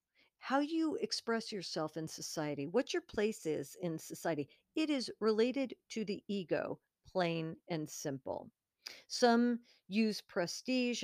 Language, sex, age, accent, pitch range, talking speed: English, female, 50-69, American, 175-235 Hz, 130 wpm